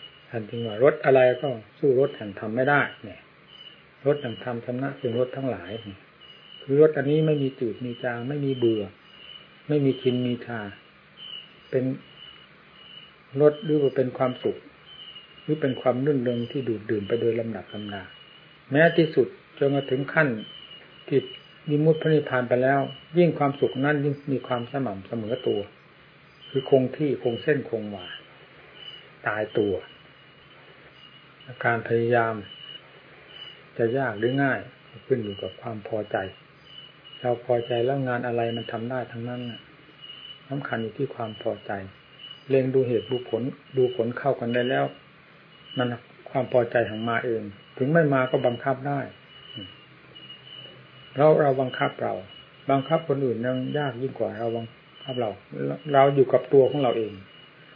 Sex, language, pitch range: male, English, 115-145 Hz